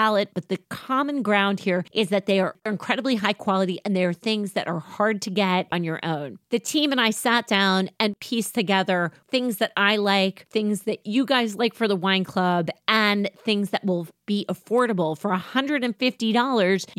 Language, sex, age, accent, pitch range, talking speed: English, female, 30-49, American, 175-220 Hz, 190 wpm